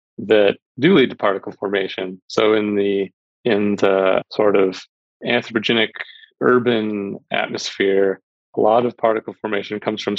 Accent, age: American, 30-49